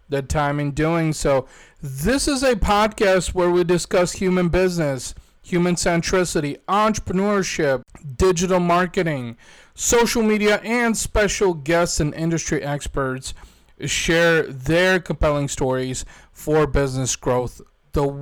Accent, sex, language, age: American, male, English, 40-59